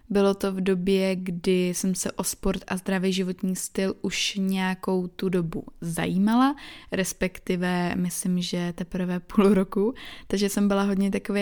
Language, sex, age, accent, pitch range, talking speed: Czech, female, 20-39, native, 185-210 Hz, 150 wpm